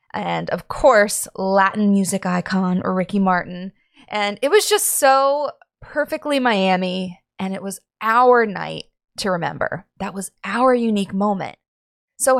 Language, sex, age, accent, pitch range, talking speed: English, female, 20-39, American, 185-240 Hz, 135 wpm